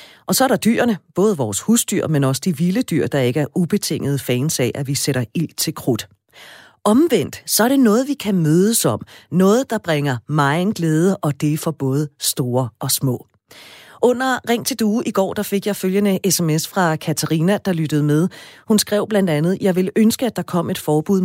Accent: native